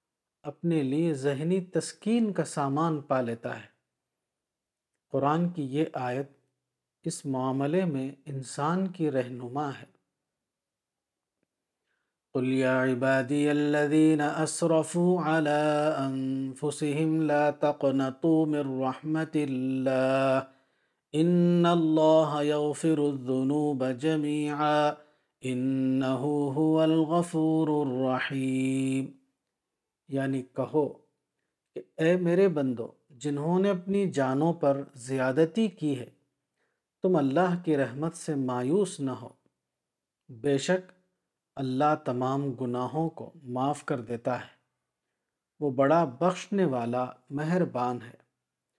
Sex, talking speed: male, 95 wpm